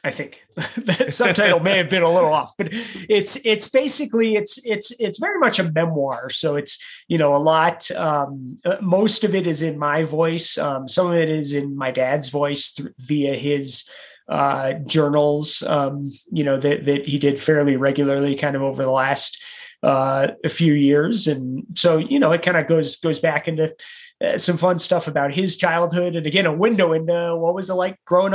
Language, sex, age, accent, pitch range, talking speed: English, male, 30-49, American, 145-200 Hz, 195 wpm